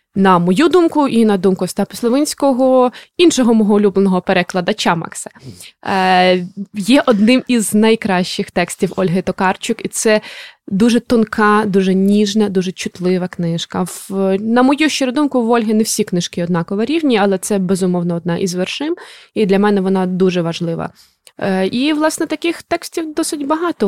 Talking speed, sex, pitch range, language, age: 145 wpm, female, 185-230 Hz, Ukrainian, 20-39